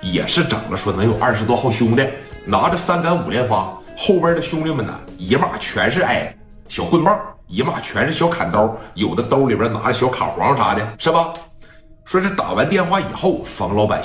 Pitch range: 105-150 Hz